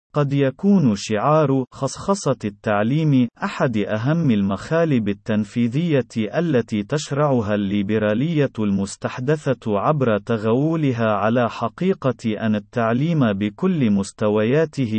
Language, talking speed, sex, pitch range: Arabic, 85 wpm, male, 110-150 Hz